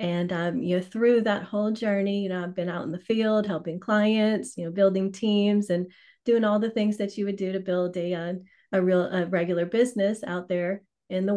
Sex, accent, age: female, American, 30-49